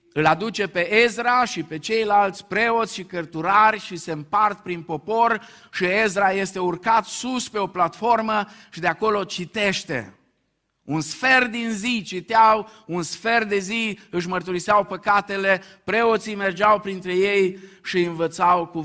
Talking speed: 145 wpm